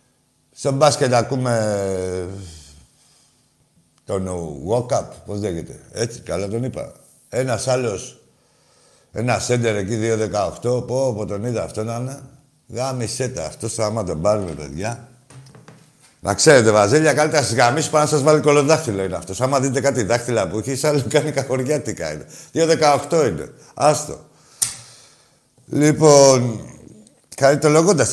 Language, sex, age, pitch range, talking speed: Greek, male, 60-79, 100-140 Hz, 130 wpm